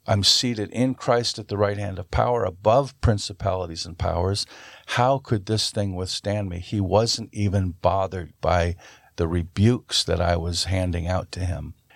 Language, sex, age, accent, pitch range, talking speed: English, male, 50-69, American, 90-115 Hz, 170 wpm